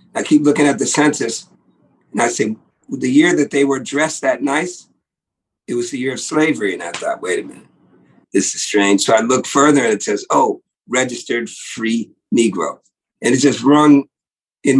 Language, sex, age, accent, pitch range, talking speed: English, male, 50-69, American, 125-150 Hz, 195 wpm